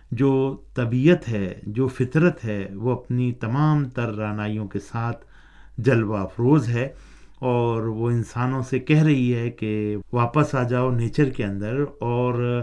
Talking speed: 145 wpm